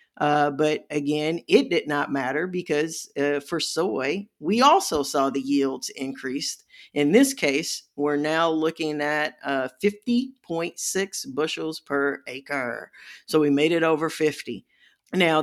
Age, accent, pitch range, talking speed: 50-69, American, 140-160 Hz, 140 wpm